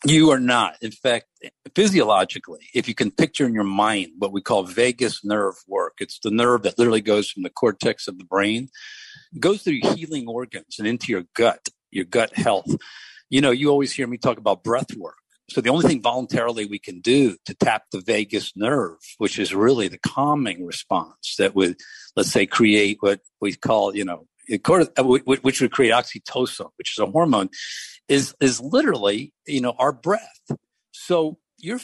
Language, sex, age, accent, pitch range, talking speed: English, male, 50-69, American, 105-140 Hz, 185 wpm